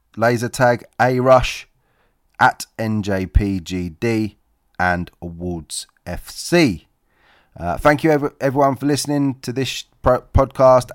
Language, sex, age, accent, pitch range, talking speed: English, male, 30-49, British, 90-115 Hz, 105 wpm